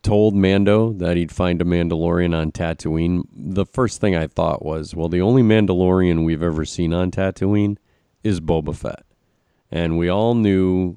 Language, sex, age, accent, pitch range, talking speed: English, male, 40-59, American, 80-100 Hz, 170 wpm